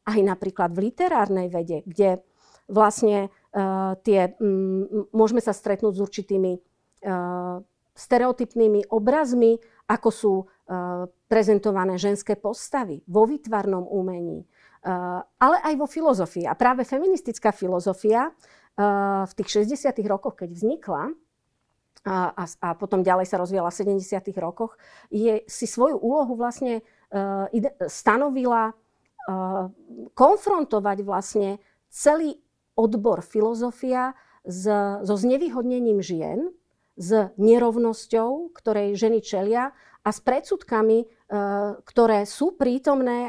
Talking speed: 110 wpm